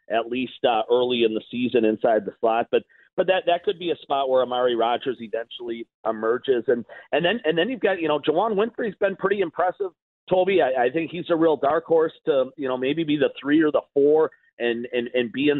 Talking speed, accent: 235 wpm, American